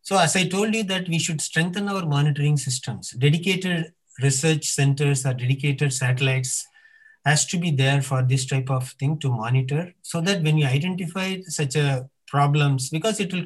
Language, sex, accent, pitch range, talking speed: English, male, Indian, 150-195 Hz, 180 wpm